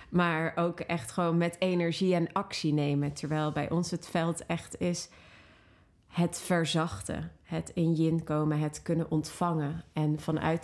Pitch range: 155-175 Hz